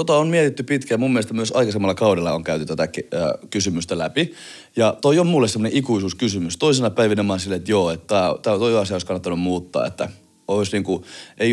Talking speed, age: 200 wpm, 30-49